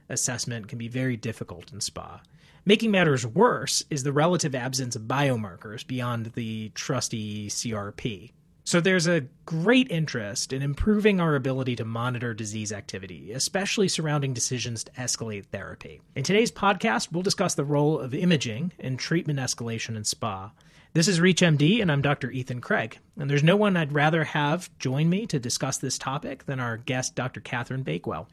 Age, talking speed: 30-49, 170 wpm